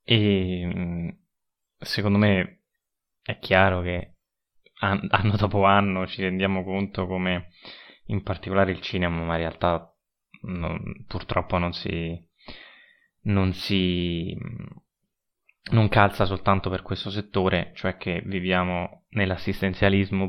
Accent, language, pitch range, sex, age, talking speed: native, Italian, 85-100 Hz, male, 20-39, 105 wpm